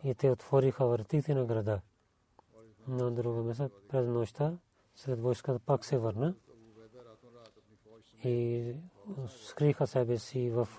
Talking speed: 115 wpm